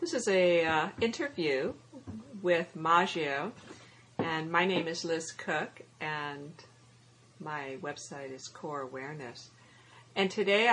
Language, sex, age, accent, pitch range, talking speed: English, female, 50-69, American, 130-180 Hz, 115 wpm